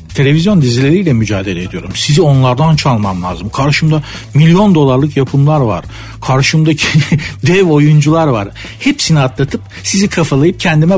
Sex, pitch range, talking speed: male, 120-160 Hz, 120 wpm